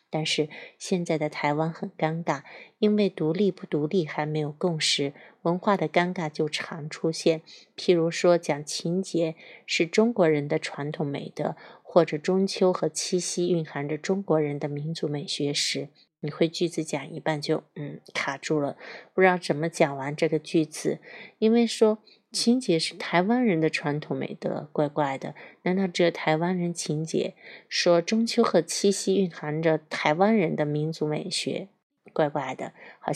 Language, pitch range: Chinese, 155-185 Hz